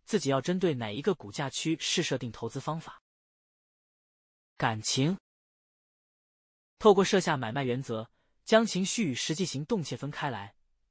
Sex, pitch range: male, 135-195 Hz